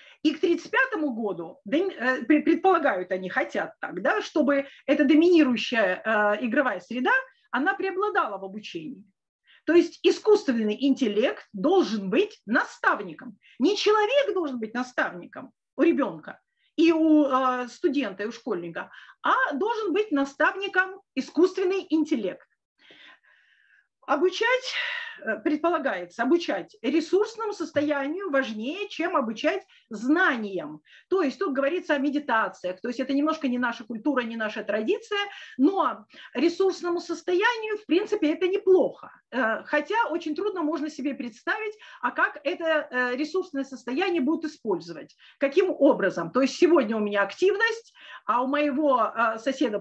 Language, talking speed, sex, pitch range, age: Russian, 120 wpm, female, 250-350 Hz, 40-59